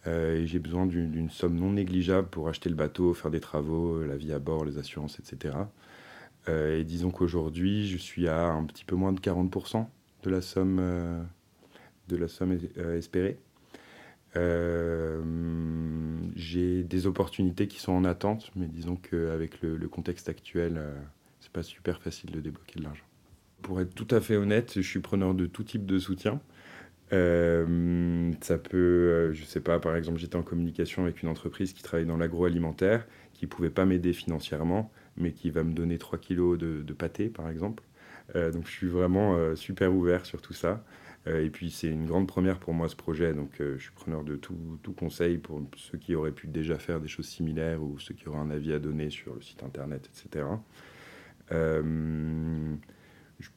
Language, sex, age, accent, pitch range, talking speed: French, male, 30-49, French, 80-90 Hz, 200 wpm